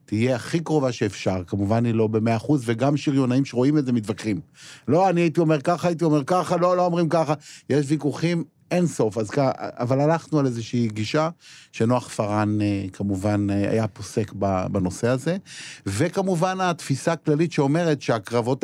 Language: Hebrew